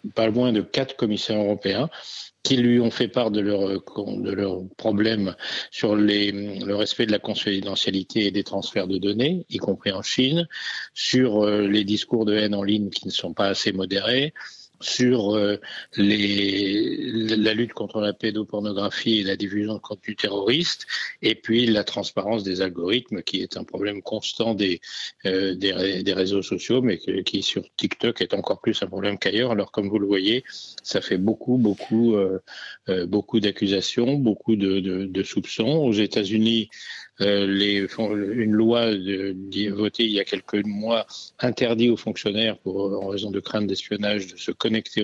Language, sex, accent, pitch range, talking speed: French, male, French, 100-110 Hz, 165 wpm